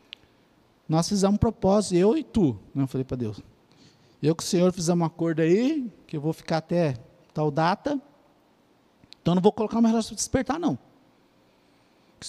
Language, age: Portuguese, 50-69